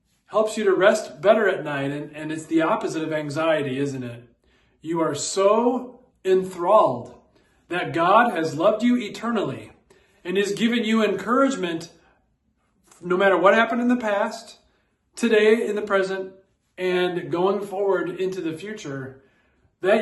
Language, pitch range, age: English, 165-230 Hz, 40-59